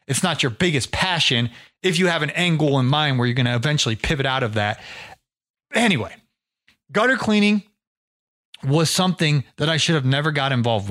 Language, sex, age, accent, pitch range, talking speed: English, male, 30-49, American, 145-185 Hz, 180 wpm